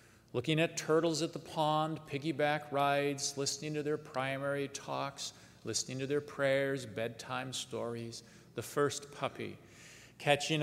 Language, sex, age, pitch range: English, male, 40-59, 105-140 Hz